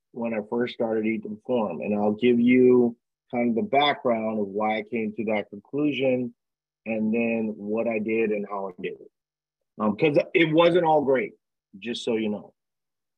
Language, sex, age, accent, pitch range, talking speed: English, male, 30-49, American, 105-130 Hz, 185 wpm